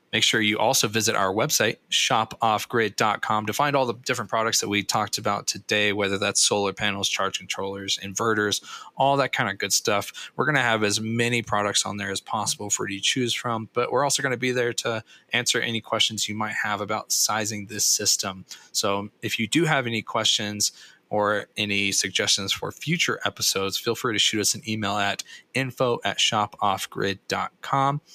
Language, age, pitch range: English, 20-39, 105-125 Hz